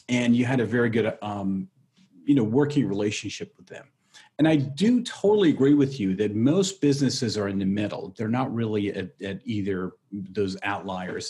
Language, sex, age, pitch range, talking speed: English, male, 40-59, 95-125 Hz, 185 wpm